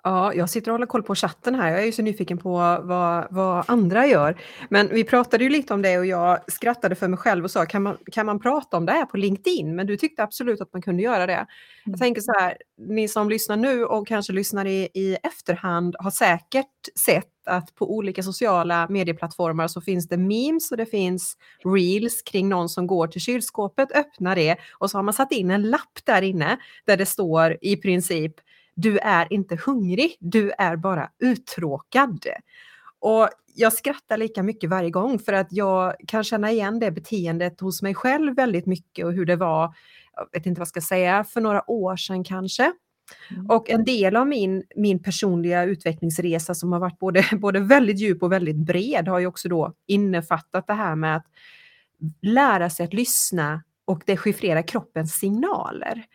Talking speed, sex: 195 wpm, female